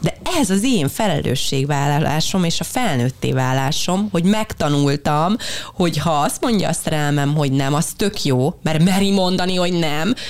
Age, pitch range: 30-49, 145-195 Hz